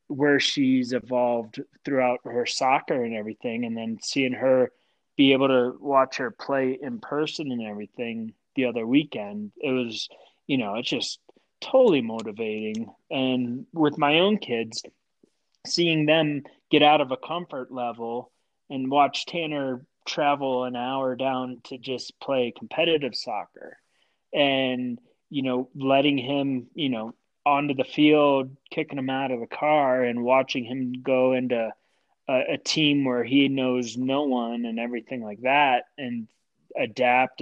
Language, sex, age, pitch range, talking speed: English, male, 20-39, 125-150 Hz, 150 wpm